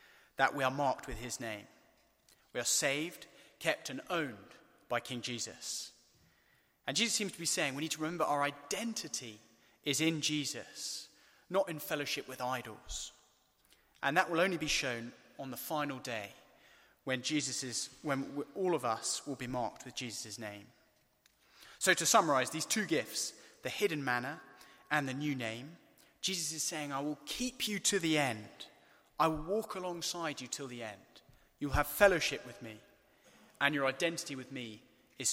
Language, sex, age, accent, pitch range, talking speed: English, male, 20-39, British, 125-170 Hz, 175 wpm